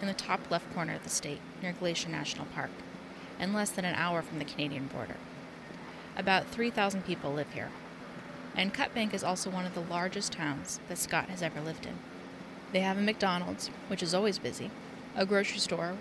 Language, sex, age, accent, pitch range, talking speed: English, female, 30-49, American, 175-205 Hz, 195 wpm